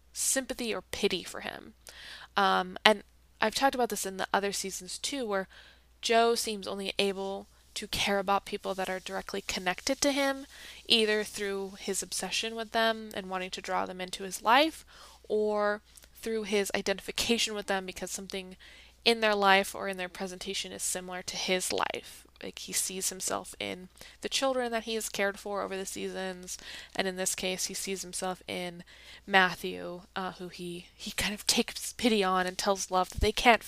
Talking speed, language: 185 wpm, English